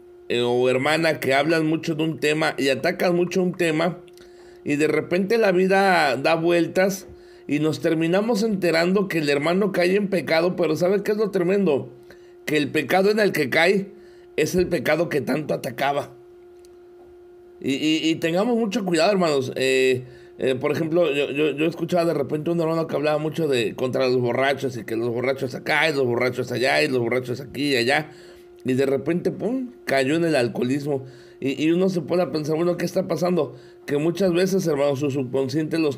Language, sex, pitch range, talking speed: Spanish, male, 140-180 Hz, 195 wpm